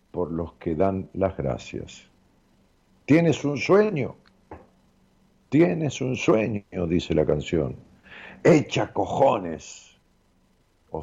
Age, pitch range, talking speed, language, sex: 50-69, 90-130 Hz, 100 wpm, Spanish, male